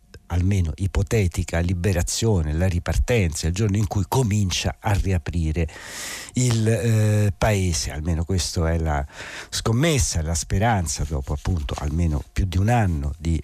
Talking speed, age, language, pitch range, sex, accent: 135 wpm, 60-79, Italian, 85-110 Hz, male, native